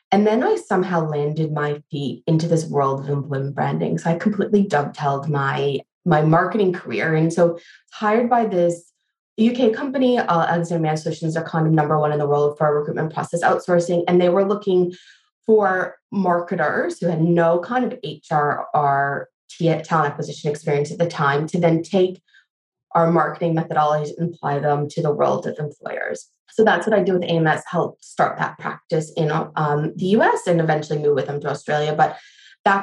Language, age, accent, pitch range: English, 20-39, American, 150-180 Hz